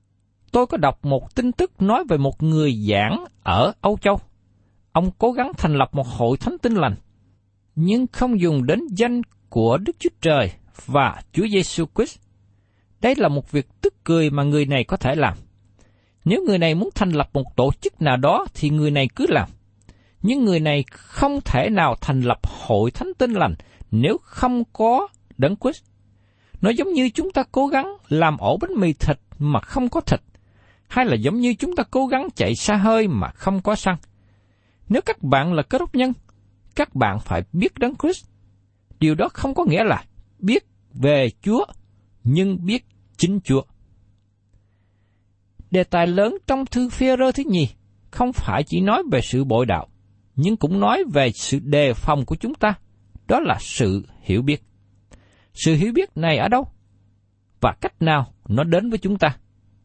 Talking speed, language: 185 wpm, Vietnamese